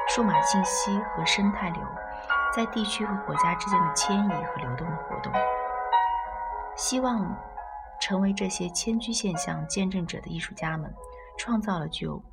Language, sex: Chinese, female